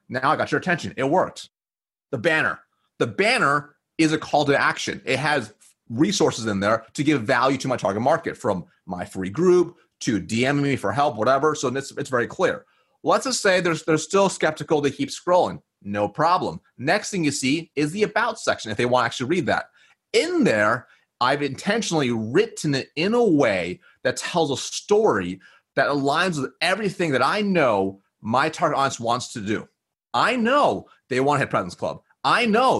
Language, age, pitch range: English, 30-49, 125-180 Hz